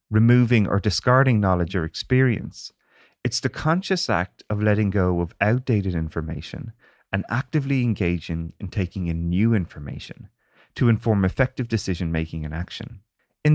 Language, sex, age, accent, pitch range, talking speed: English, male, 30-49, Irish, 90-125 Hz, 140 wpm